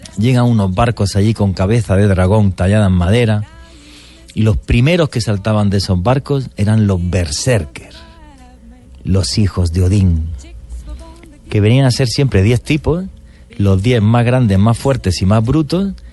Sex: male